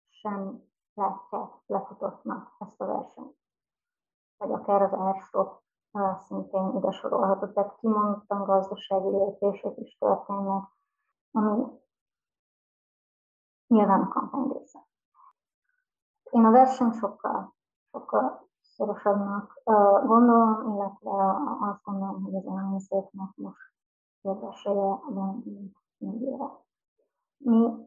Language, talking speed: Hungarian, 90 wpm